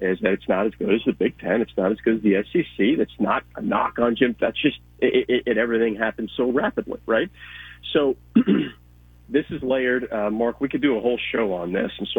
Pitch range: 100-135 Hz